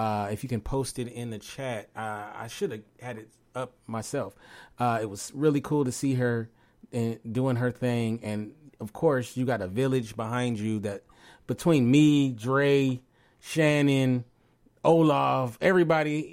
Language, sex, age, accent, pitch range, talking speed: English, male, 30-49, American, 110-130 Hz, 160 wpm